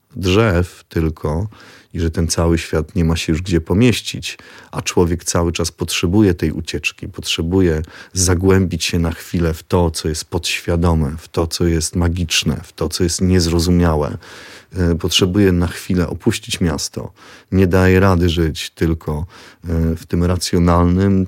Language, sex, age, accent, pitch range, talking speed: Polish, male, 30-49, native, 85-95 Hz, 150 wpm